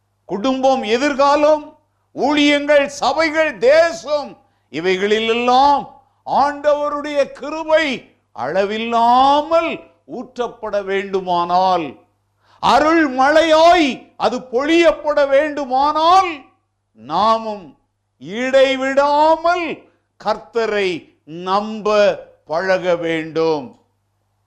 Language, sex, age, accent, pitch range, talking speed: Tamil, male, 50-69, native, 200-300 Hz, 55 wpm